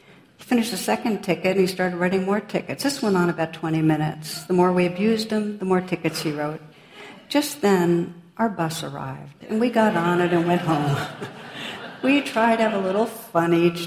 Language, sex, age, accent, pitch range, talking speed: English, female, 60-79, American, 165-195 Hz, 205 wpm